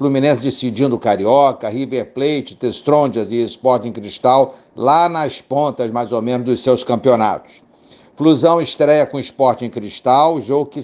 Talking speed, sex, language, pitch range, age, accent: 140 wpm, male, Portuguese, 130-160 Hz, 60-79, Brazilian